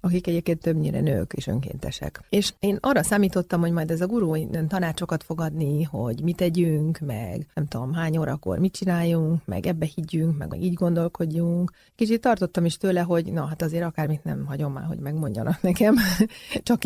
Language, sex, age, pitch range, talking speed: Hungarian, female, 30-49, 165-205 Hz, 180 wpm